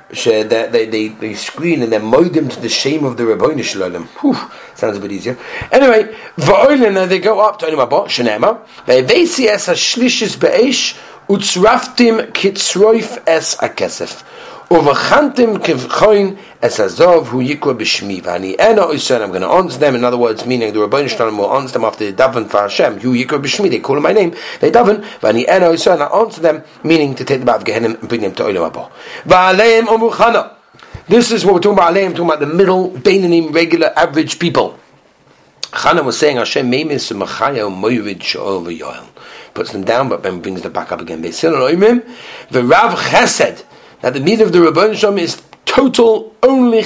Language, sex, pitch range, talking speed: English, male, 140-225 Hz, 160 wpm